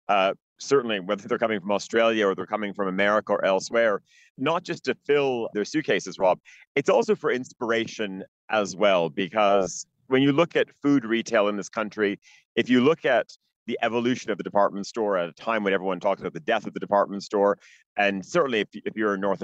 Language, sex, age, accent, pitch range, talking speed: English, male, 40-59, American, 100-135 Hz, 205 wpm